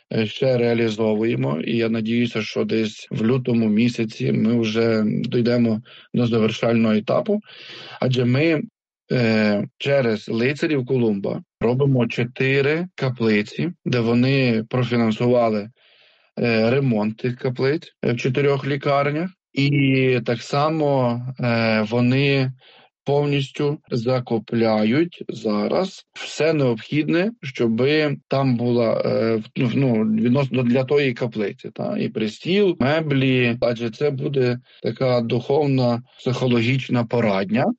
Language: Ukrainian